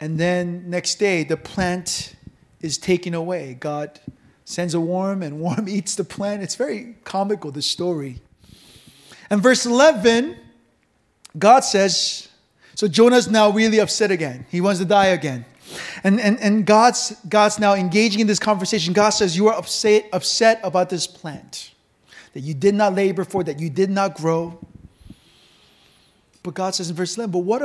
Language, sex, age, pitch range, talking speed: English, male, 30-49, 180-240 Hz, 165 wpm